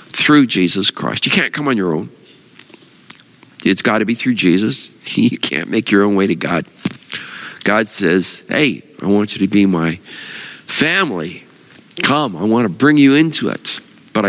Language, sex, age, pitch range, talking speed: English, male, 50-69, 105-140 Hz, 175 wpm